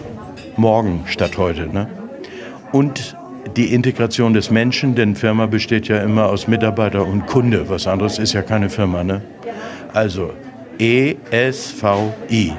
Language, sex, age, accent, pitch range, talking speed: German, male, 60-79, German, 105-125 Hz, 130 wpm